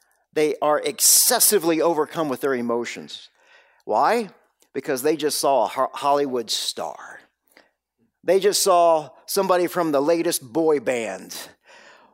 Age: 50-69